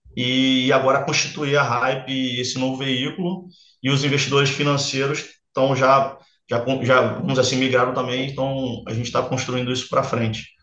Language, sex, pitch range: Portuguese, male, 125-140 Hz